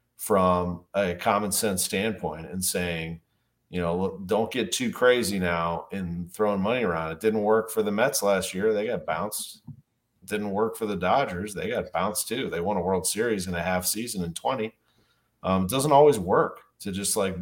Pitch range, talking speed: 95-120 Hz, 200 wpm